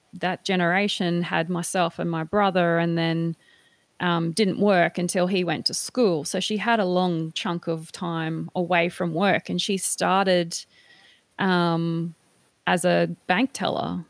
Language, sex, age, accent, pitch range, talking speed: English, female, 30-49, Australian, 170-190 Hz, 155 wpm